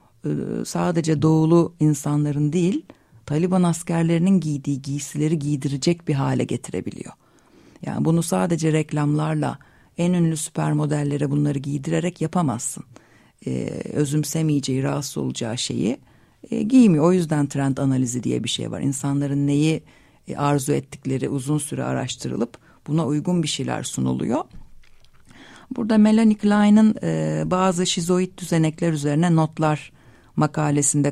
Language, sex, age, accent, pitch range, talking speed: Turkish, female, 50-69, native, 140-180 Hz, 115 wpm